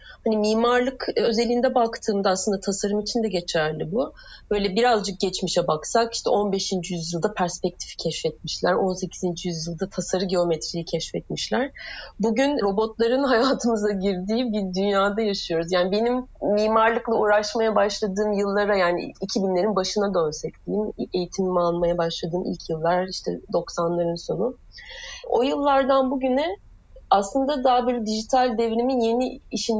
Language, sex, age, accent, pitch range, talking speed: Turkish, female, 30-49, native, 185-235 Hz, 120 wpm